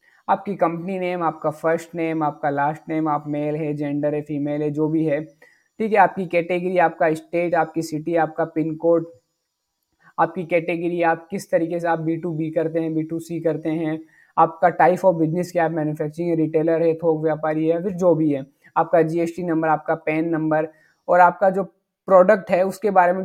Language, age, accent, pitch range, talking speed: Hindi, 20-39, native, 155-185 Hz, 190 wpm